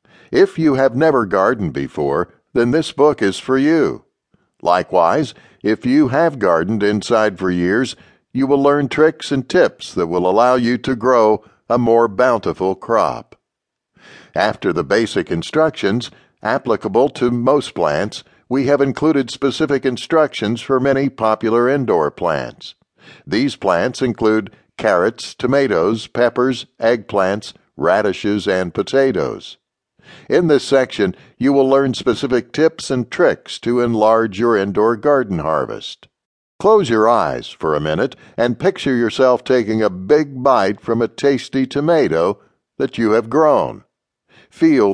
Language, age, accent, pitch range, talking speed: English, 60-79, American, 110-140 Hz, 135 wpm